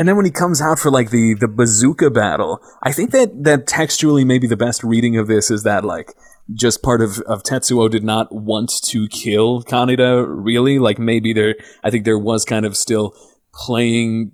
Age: 30-49